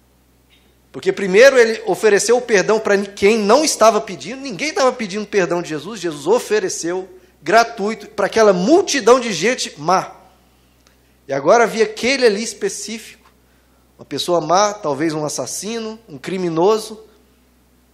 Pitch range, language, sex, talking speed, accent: 140-220 Hz, Portuguese, male, 135 wpm, Brazilian